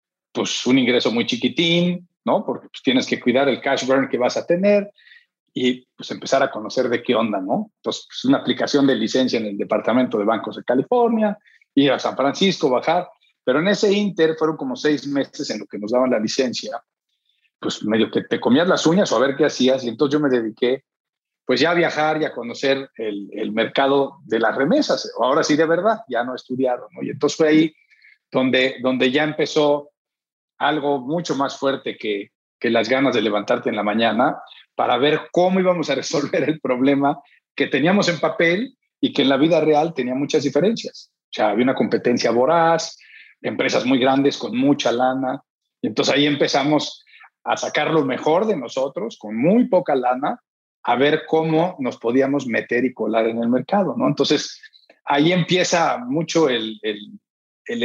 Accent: Mexican